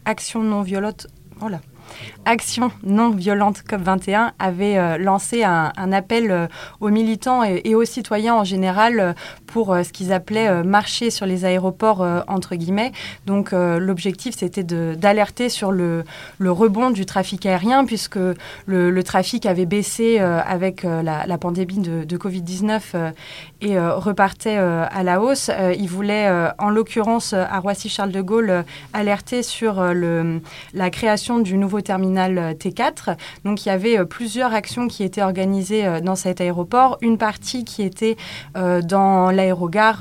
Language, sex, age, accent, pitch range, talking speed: French, female, 20-39, French, 180-215 Hz, 170 wpm